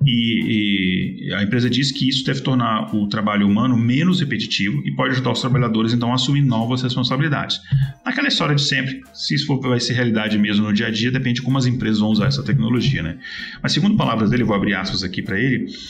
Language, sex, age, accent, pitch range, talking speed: Portuguese, male, 30-49, Brazilian, 100-130 Hz, 220 wpm